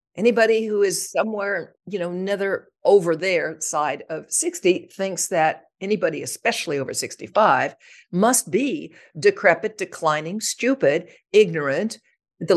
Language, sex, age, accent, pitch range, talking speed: English, female, 60-79, American, 175-280 Hz, 120 wpm